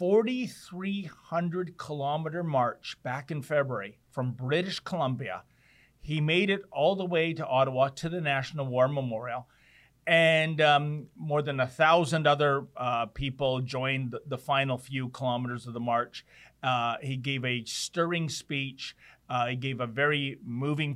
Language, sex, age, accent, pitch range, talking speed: English, male, 40-59, American, 130-170 Hz, 145 wpm